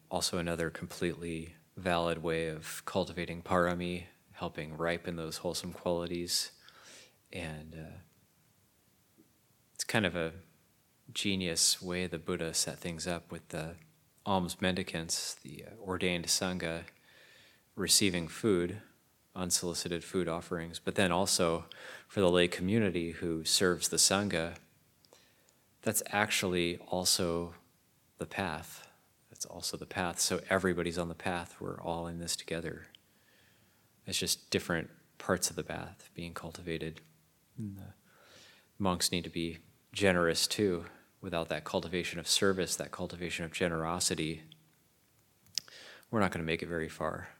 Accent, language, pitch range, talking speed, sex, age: American, English, 80-90 Hz, 130 wpm, male, 30-49